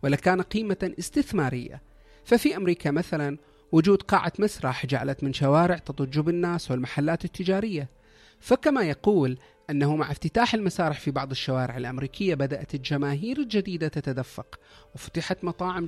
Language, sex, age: Arabic, male, 40-59